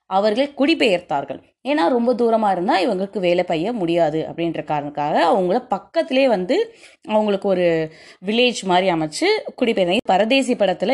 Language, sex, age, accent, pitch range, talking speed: Tamil, female, 20-39, native, 180-265 Hz, 125 wpm